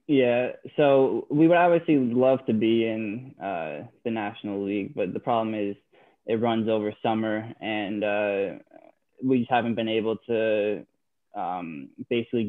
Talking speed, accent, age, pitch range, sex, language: 150 wpm, American, 10-29, 110-125 Hz, male, English